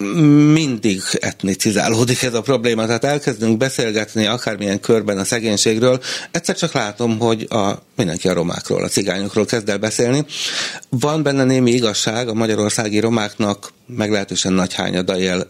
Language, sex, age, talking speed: Hungarian, male, 60-79, 140 wpm